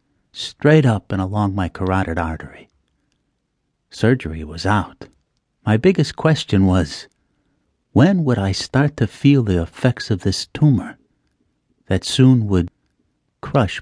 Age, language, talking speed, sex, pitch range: 60-79, English, 125 wpm, male, 90-140 Hz